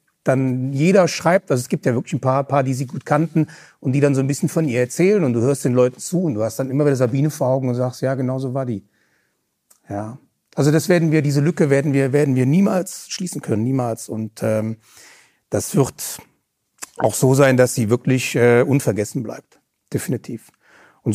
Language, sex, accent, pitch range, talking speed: German, male, German, 115-145 Hz, 215 wpm